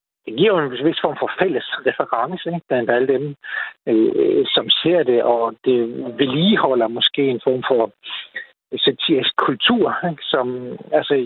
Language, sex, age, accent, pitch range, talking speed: Danish, male, 60-79, native, 115-150 Hz, 150 wpm